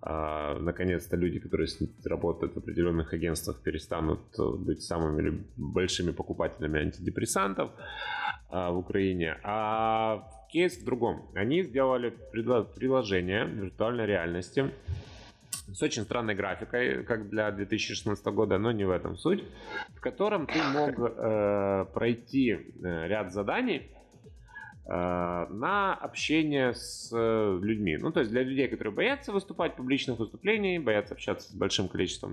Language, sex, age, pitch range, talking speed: Ukrainian, male, 30-49, 90-120 Hz, 120 wpm